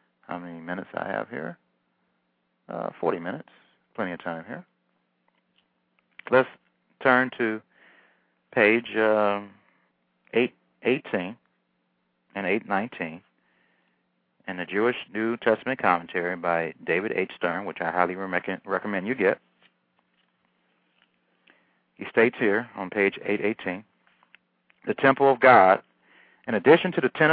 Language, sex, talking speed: English, male, 115 wpm